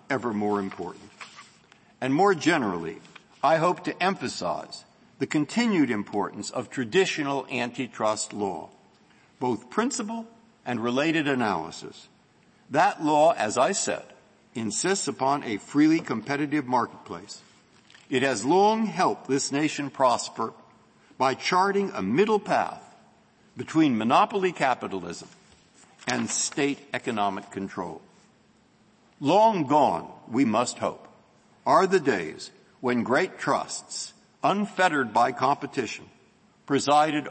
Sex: male